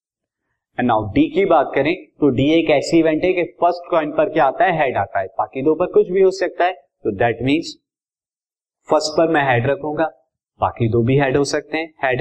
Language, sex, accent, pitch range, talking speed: Hindi, male, native, 130-175 Hz, 215 wpm